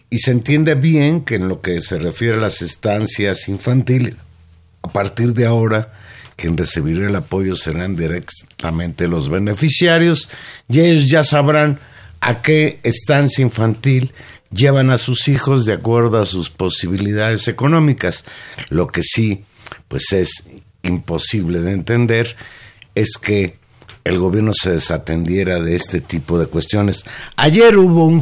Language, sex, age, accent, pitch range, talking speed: Spanish, male, 50-69, Mexican, 95-125 Hz, 140 wpm